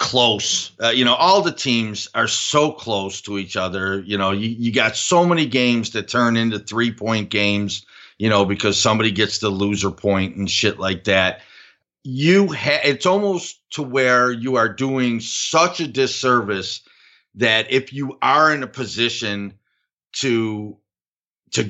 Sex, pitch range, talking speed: male, 100-135 Hz, 165 wpm